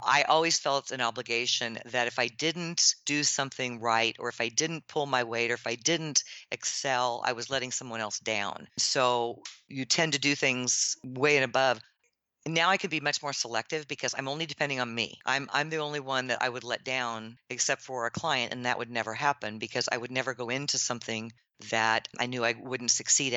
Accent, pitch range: American, 120-145 Hz